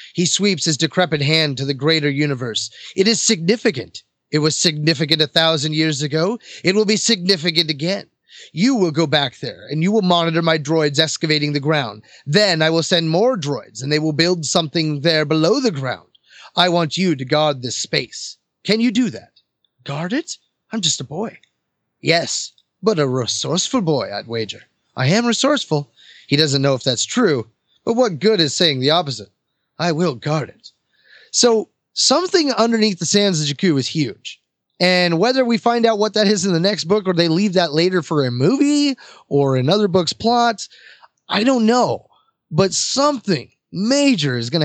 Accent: American